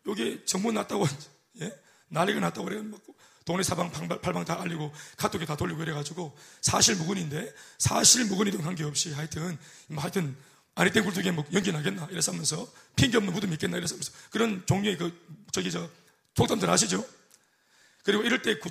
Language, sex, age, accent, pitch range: Korean, male, 30-49, native, 155-205 Hz